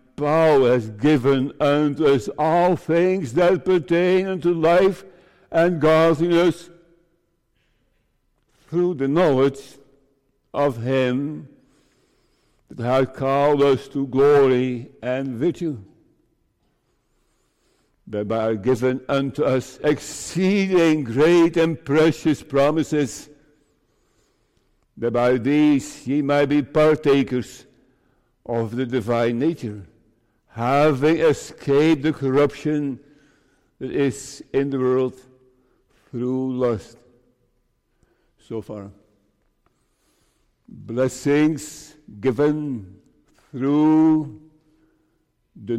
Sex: male